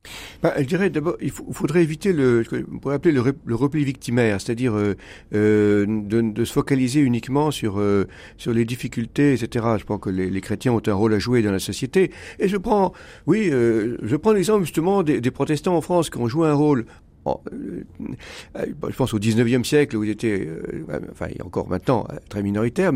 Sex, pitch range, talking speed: male, 110-155 Hz, 215 wpm